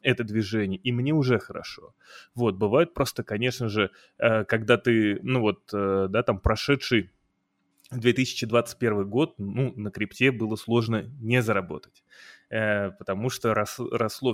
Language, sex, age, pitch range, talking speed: Russian, male, 20-39, 105-125 Hz, 125 wpm